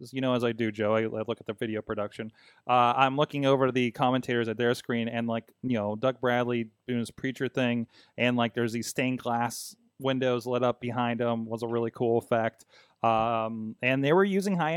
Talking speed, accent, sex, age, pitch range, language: 220 wpm, American, male, 30-49, 120-145 Hz, English